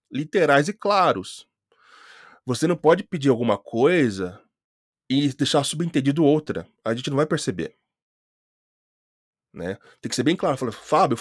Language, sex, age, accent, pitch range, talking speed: Portuguese, male, 20-39, Brazilian, 125-160 Hz, 135 wpm